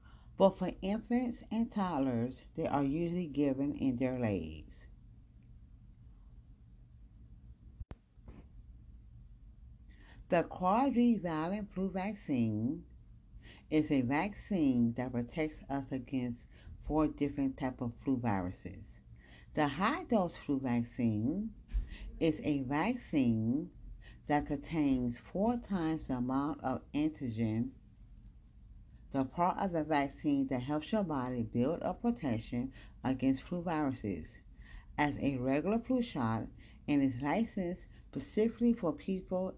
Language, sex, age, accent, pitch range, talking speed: English, female, 40-59, American, 120-185 Hz, 105 wpm